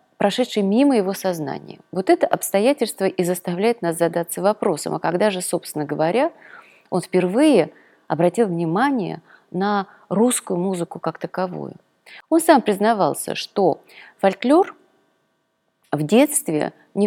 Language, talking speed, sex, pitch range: Russian, 120 wpm, female, 180-245 Hz